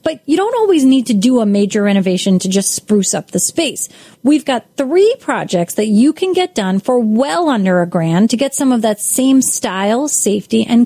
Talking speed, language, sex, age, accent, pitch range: 215 wpm, English, female, 30-49, American, 205-275 Hz